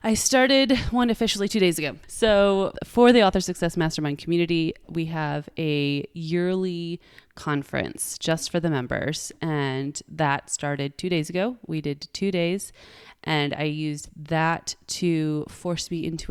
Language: English